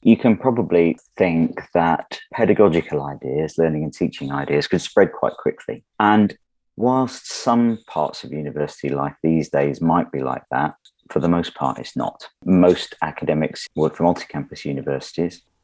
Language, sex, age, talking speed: English, male, 40-59, 155 wpm